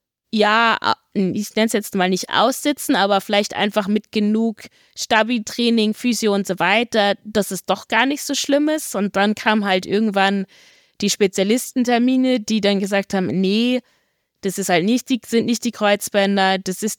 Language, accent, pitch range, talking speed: German, German, 190-230 Hz, 175 wpm